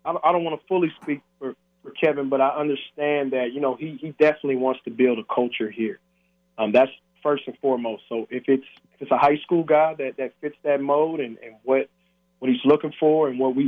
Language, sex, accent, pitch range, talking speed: English, male, American, 120-145 Hz, 230 wpm